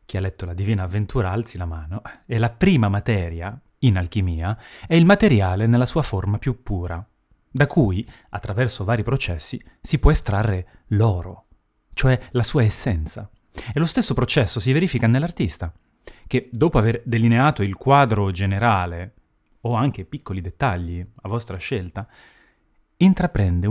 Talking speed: 145 wpm